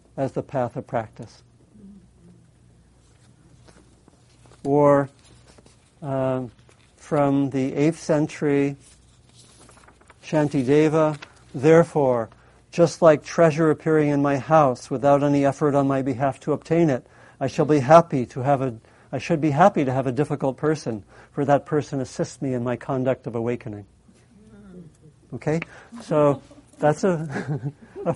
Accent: American